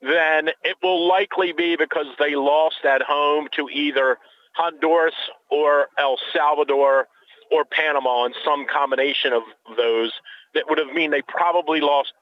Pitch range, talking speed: 145-180 Hz, 145 wpm